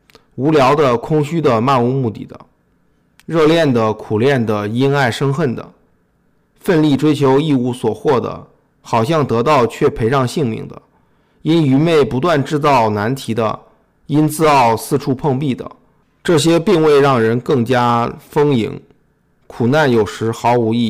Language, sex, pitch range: Chinese, male, 115-150 Hz